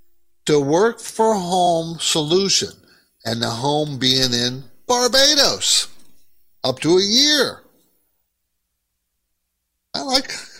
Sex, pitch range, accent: male, 115-155 Hz, American